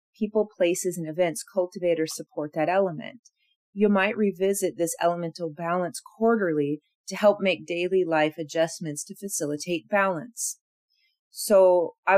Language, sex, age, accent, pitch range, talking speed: English, female, 30-49, American, 160-200 Hz, 135 wpm